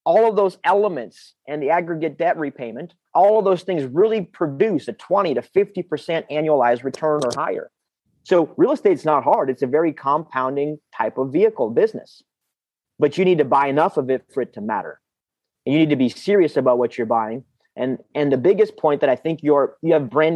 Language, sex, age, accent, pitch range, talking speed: English, male, 30-49, American, 140-180 Hz, 205 wpm